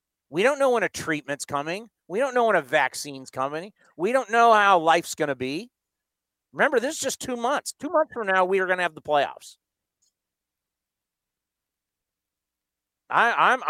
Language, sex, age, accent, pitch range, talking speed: English, male, 40-59, American, 145-215 Hz, 175 wpm